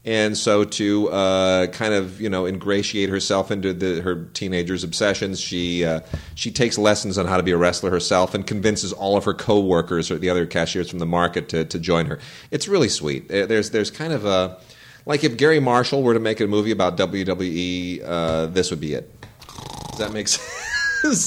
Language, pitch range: English, 100-130 Hz